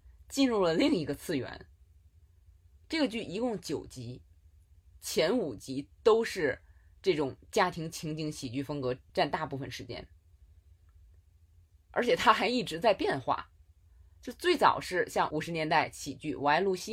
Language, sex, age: Chinese, female, 20-39